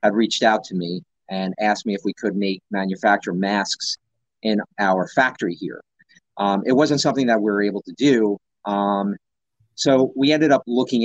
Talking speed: 185 wpm